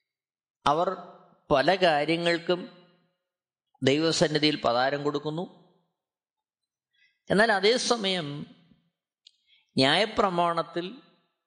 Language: Malayalam